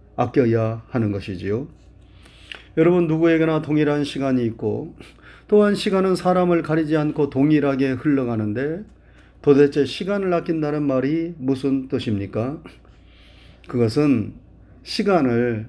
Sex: male